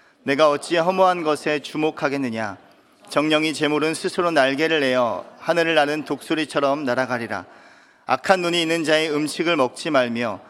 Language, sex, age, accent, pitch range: Korean, male, 40-59, native, 140-165 Hz